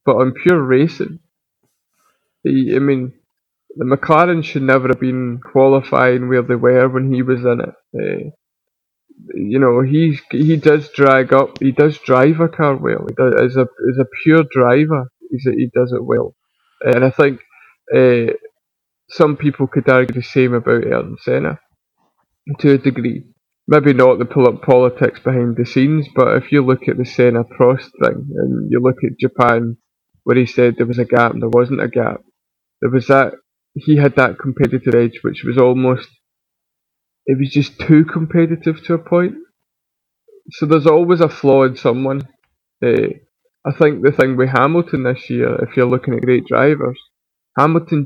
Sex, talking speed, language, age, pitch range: male, 175 wpm, English, 20-39, 125-155 Hz